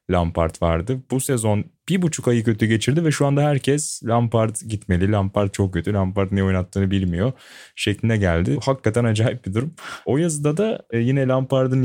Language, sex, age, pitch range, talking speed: Turkish, male, 20-39, 95-115 Hz, 165 wpm